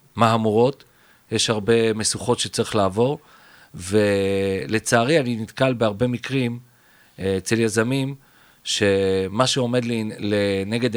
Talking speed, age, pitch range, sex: 95 wpm, 40-59, 100-125 Hz, male